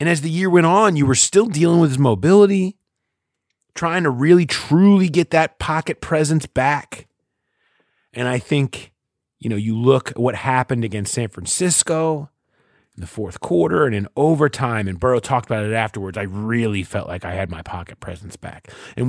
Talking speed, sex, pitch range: 185 wpm, male, 105-145 Hz